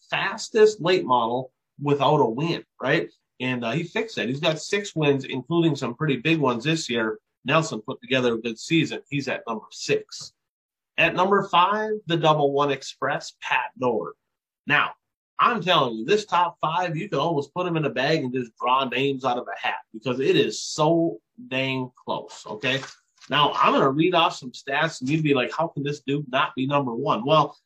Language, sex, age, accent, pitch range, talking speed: English, male, 30-49, American, 140-175 Hz, 200 wpm